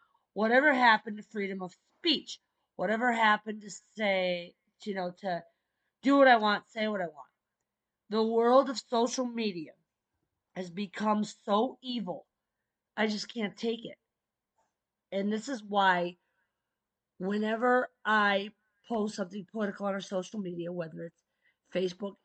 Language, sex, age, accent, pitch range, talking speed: English, female, 40-59, American, 190-240 Hz, 140 wpm